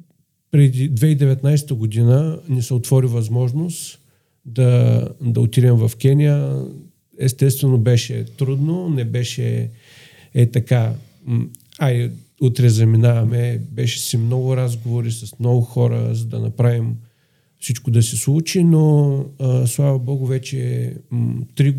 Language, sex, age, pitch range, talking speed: Bulgarian, male, 40-59, 120-135 Hz, 115 wpm